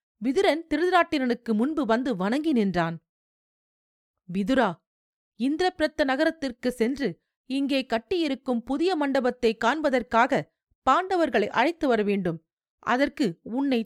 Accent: native